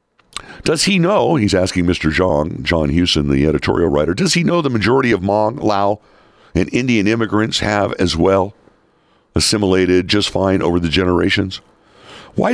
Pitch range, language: 80-105 Hz, English